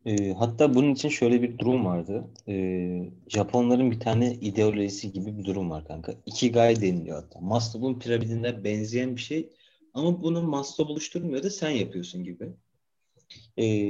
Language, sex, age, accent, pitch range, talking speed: Turkish, male, 40-59, native, 100-130 Hz, 150 wpm